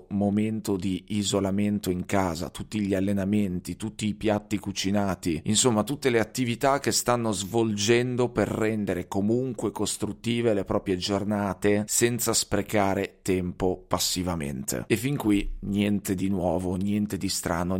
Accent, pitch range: native, 95-110 Hz